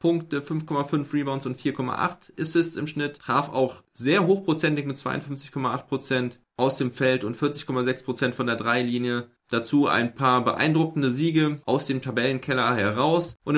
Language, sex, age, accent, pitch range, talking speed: German, male, 20-39, German, 115-145 Hz, 140 wpm